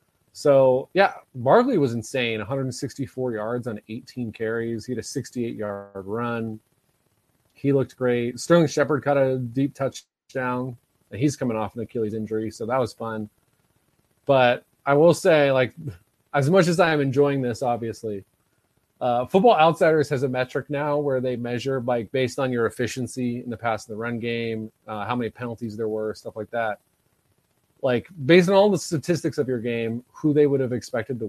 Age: 30-49